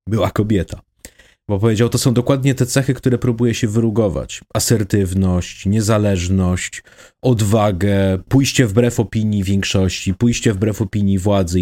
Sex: male